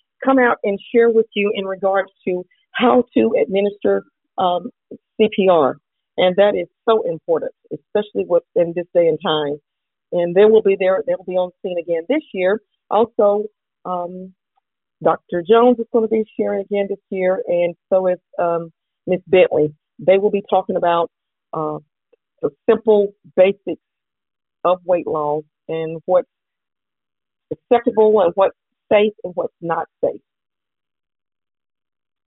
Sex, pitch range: female, 175-220 Hz